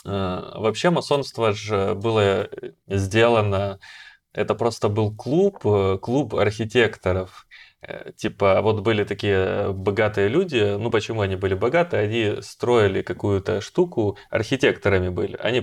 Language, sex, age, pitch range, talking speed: Russian, male, 20-39, 95-110 Hz, 110 wpm